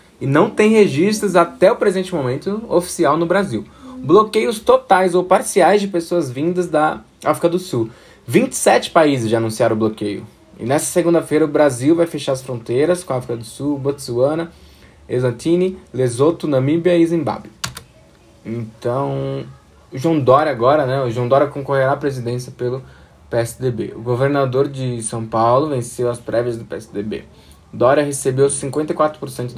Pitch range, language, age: 120-160 Hz, Portuguese, 20-39